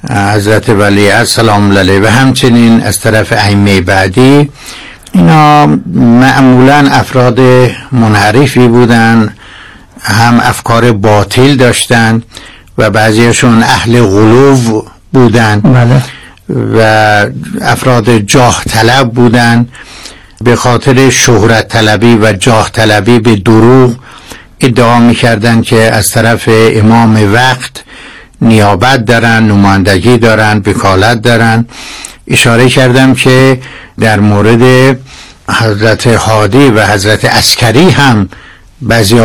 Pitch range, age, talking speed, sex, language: 105-125 Hz, 60-79, 95 wpm, male, Persian